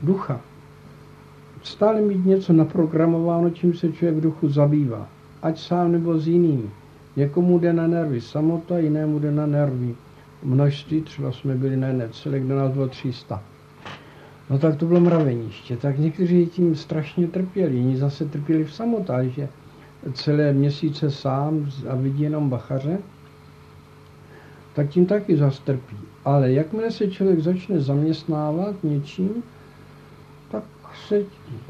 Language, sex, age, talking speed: Czech, male, 60-79, 135 wpm